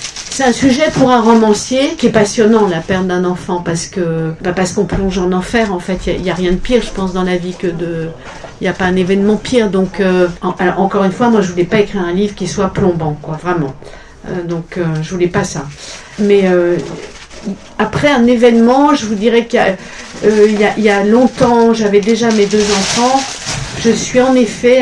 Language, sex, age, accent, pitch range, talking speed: French, female, 50-69, French, 175-220 Hz, 240 wpm